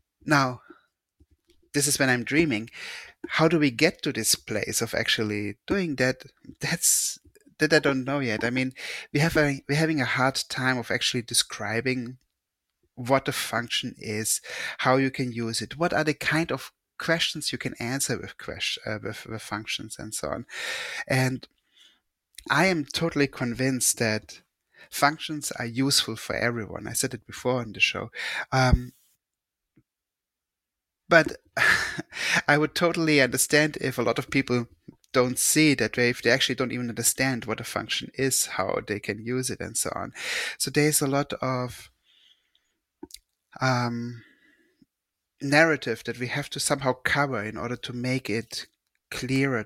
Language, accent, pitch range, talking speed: English, German, 115-145 Hz, 160 wpm